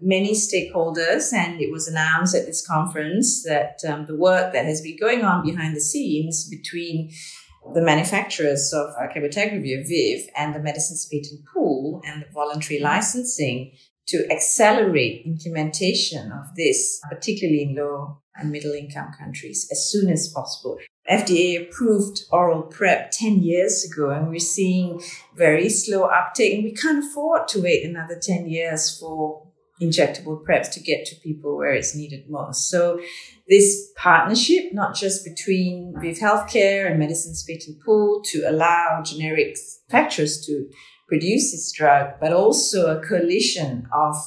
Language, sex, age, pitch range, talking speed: English, female, 40-59, 150-195 Hz, 150 wpm